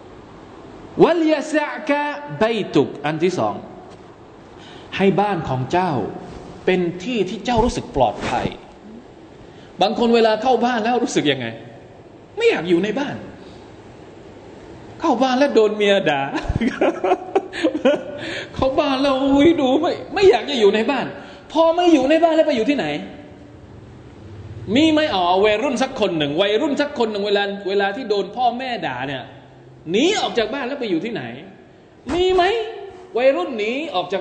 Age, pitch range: 20-39, 190-305 Hz